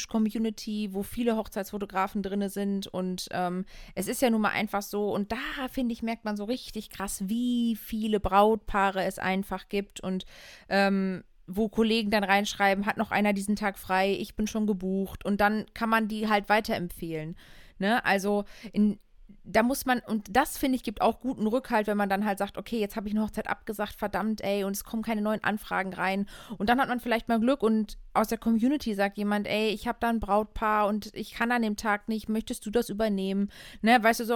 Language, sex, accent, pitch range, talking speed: German, female, German, 195-225 Hz, 210 wpm